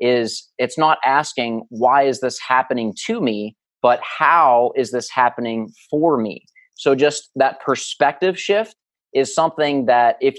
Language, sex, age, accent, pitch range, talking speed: English, male, 30-49, American, 120-150 Hz, 150 wpm